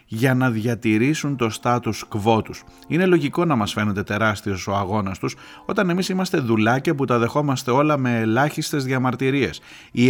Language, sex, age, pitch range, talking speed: Greek, male, 30-49, 105-135 Hz, 165 wpm